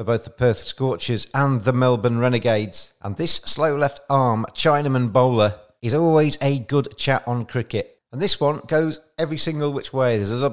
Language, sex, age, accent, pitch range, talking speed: English, male, 40-59, British, 115-145 Hz, 195 wpm